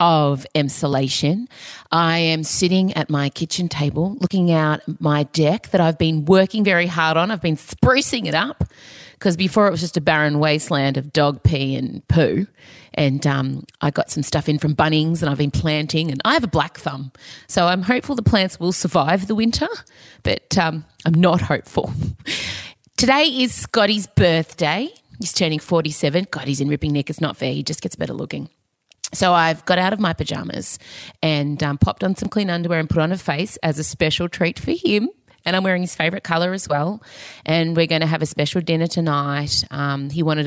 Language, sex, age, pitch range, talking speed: English, female, 30-49, 150-210 Hz, 200 wpm